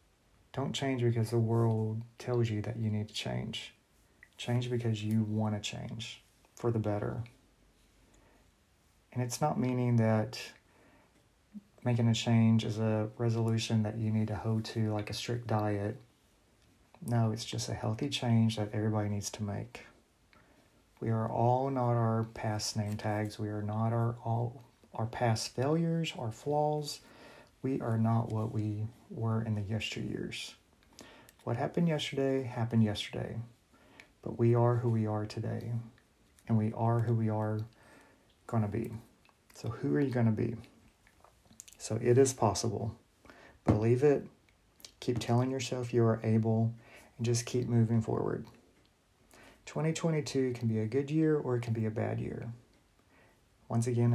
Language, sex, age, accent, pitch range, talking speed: English, male, 30-49, American, 110-120 Hz, 155 wpm